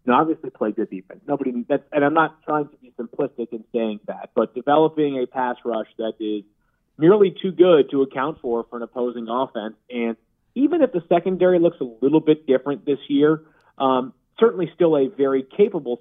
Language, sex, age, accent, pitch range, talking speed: English, male, 30-49, American, 120-150 Hz, 200 wpm